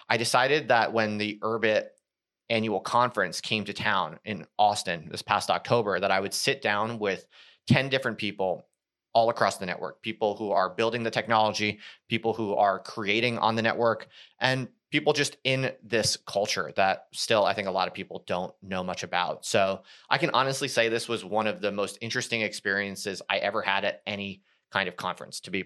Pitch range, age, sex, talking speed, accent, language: 105-120 Hz, 30-49, male, 195 wpm, American, English